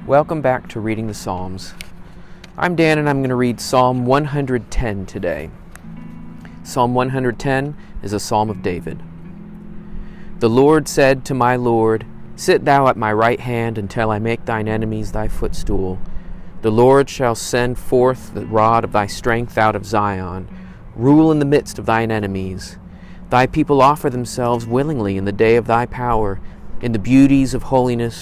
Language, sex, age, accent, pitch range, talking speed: English, male, 40-59, American, 105-135 Hz, 165 wpm